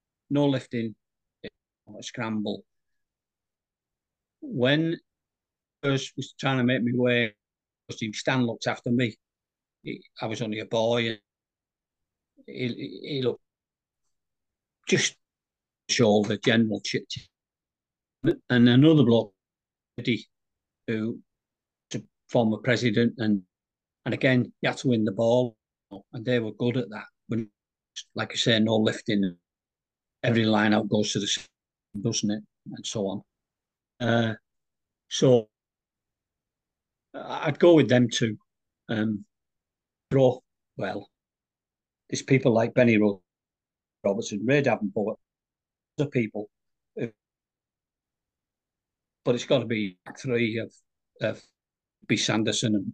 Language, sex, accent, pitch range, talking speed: English, male, British, 105-125 Hz, 120 wpm